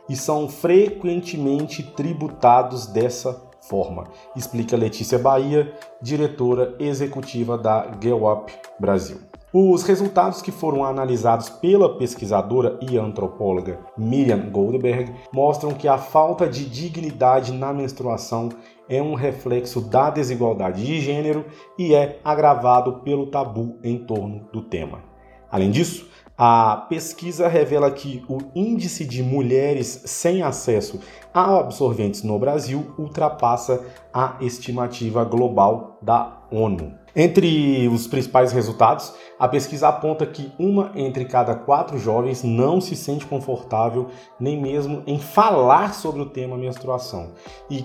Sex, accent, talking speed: male, Brazilian, 120 wpm